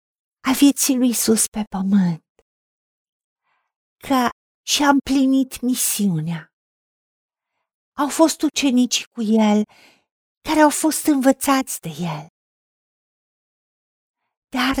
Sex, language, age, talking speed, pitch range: female, Romanian, 50-69, 85 wpm, 210-275 Hz